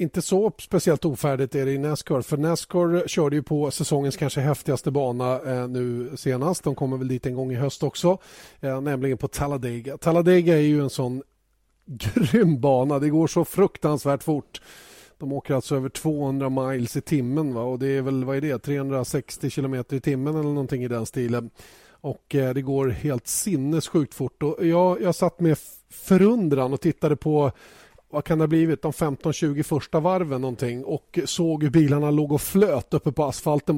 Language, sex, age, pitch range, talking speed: Swedish, male, 30-49, 135-160 Hz, 180 wpm